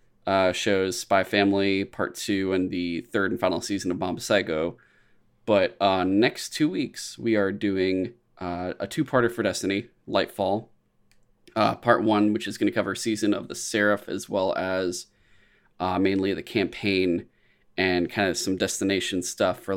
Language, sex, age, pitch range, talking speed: English, male, 20-39, 95-105 Hz, 170 wpm